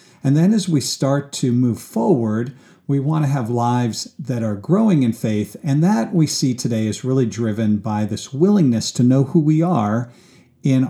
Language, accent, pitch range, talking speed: English, American, 115-150 Hz, 195 wpm